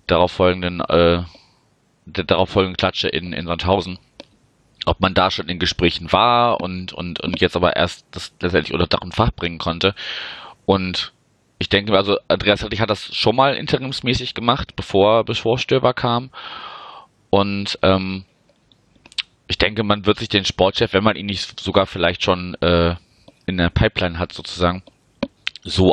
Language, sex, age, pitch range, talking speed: German, male, 30-49, 85-100 Hz, 155 wpm